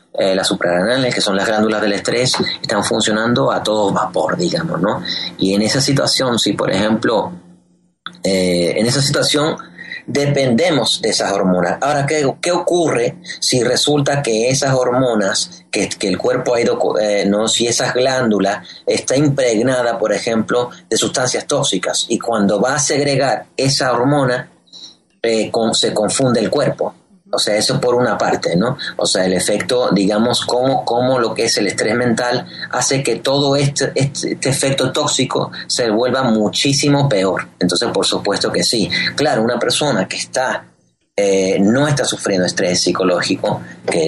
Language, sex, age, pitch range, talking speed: English, male, 30-49, 100-135 Hz, 160 wpm